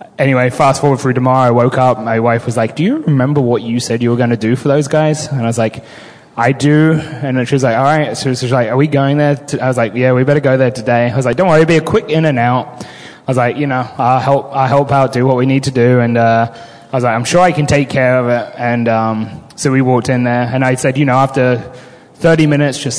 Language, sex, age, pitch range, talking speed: English, male, 20-39, 120-140 Hz, 300 wpm